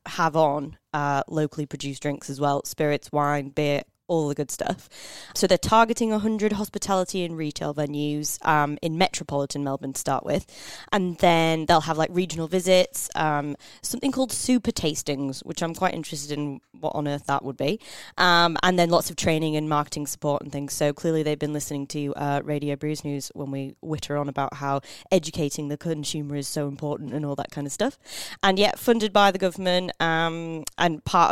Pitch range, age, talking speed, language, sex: 145-180 Hz, 20-39, 195 wpm, English, female